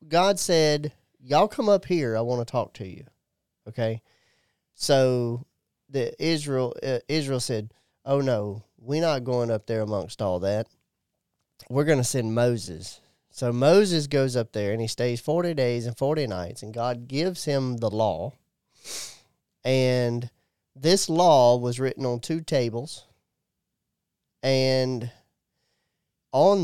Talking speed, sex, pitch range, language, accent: 140 wpm, male, 115-145 Hz, English, American